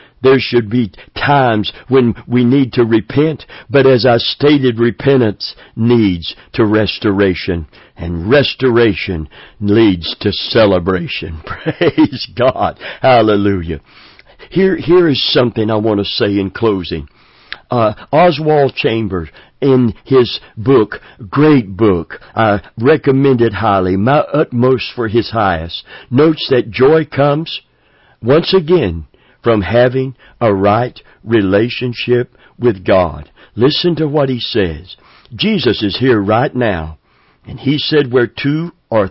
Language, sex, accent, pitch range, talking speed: English, male, American, 100-135 Hz, 125 wpm